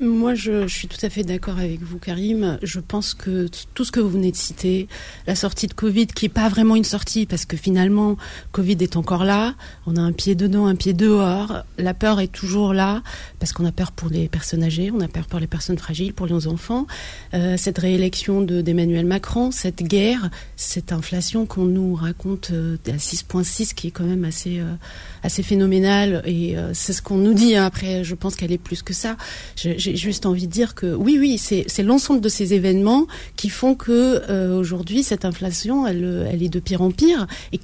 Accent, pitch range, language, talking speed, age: French, 175-215 Hz, French, 220 wpm, 40-59